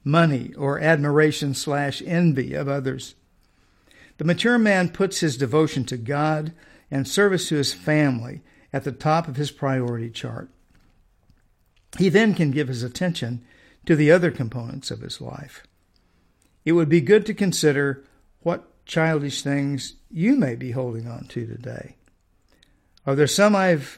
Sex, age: male, 50-69